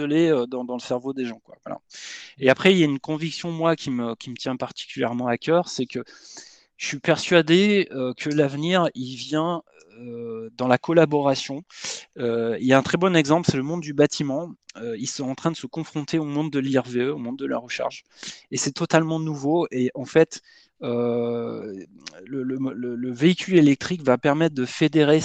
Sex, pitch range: male, 125-160 Hz